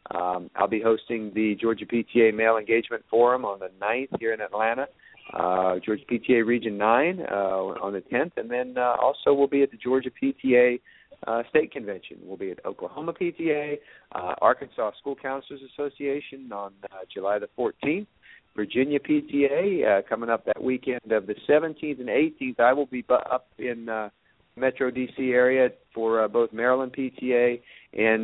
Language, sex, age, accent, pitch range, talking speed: English, male, 50-69, American, 110-130 Hz, 170 wpm